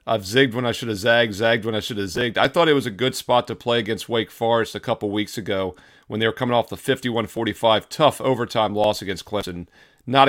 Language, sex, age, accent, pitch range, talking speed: English, male, 40-59, American, 105-125 Hz, 250 wpm